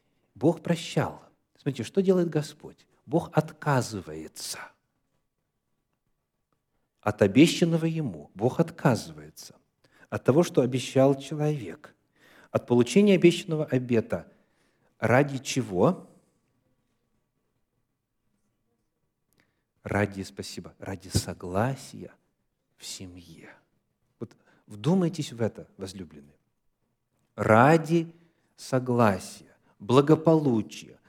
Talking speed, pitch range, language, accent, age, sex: 75 wpm, 115-165 Hz, Russian, native, 50-69, male